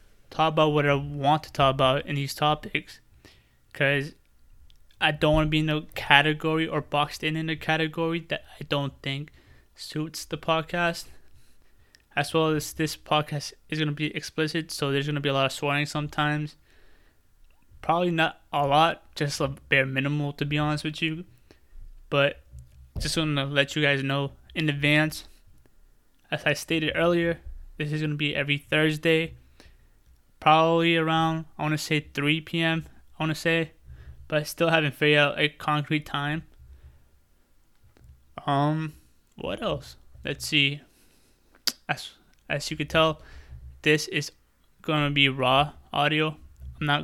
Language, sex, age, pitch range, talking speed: English, male, 20-39, 140-155 Hz, 155 wpm